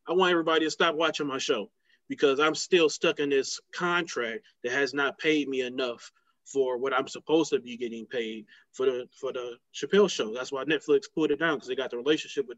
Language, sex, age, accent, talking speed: English, male, 20-39, American, 225 wpm